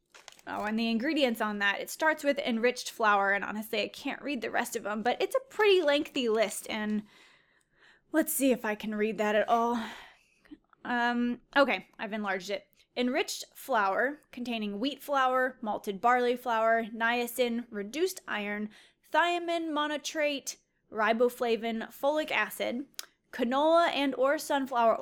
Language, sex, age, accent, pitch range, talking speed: English, female, 10-29, American, 225-290 Hz, 145 wpm